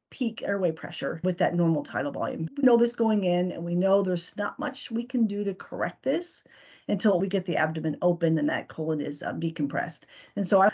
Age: 40-59